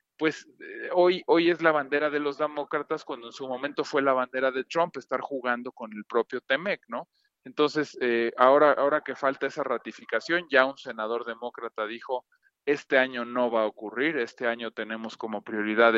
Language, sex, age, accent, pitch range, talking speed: Spanish, male, 40-59, Mexican, 120-150 Hz, 190 wpm